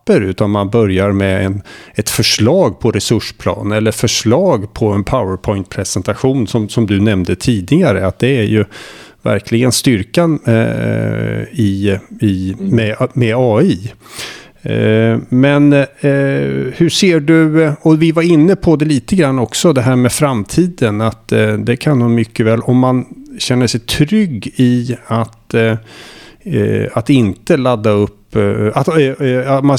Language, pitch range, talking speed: Swedish, 105-130 Hz, 140 wpm